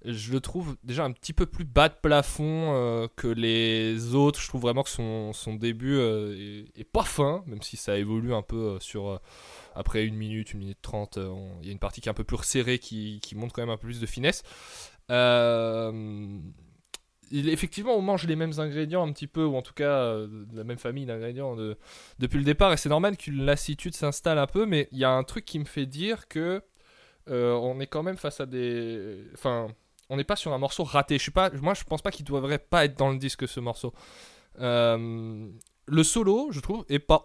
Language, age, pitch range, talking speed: Dutch, 20-39, 115-160 Hz, 235 wpm